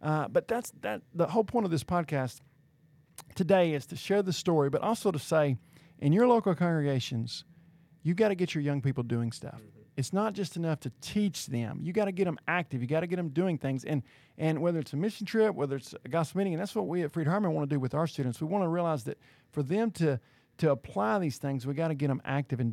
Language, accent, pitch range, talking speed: English, American, 135-170 Hz, 255 wpm